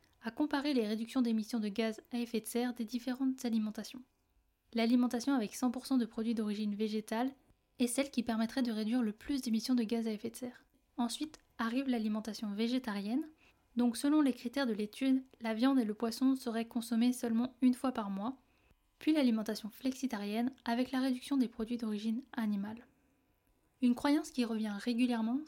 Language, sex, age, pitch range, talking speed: French, female, 10-29, 230-265 Hz, 170 wpm